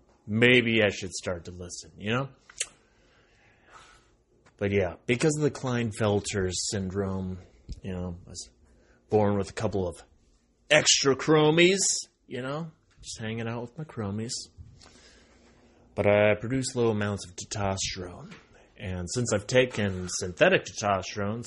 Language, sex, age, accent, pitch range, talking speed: English, male, 30-49, American, 95-125 Hz, 130 wpm